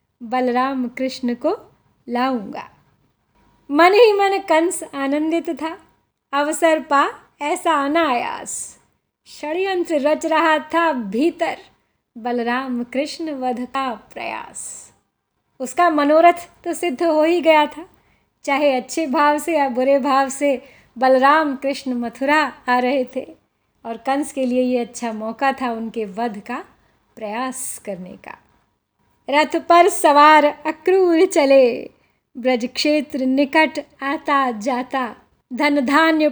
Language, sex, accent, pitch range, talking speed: Hindi, female, native, 260-325 Hz, 115 wpm